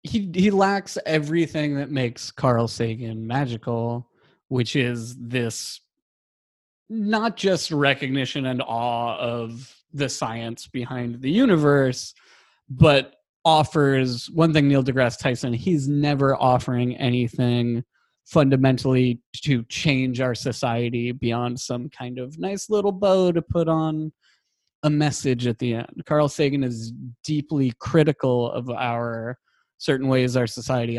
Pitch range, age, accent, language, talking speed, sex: 120-140 Hz, 30-49, American, English, 125 wpm, male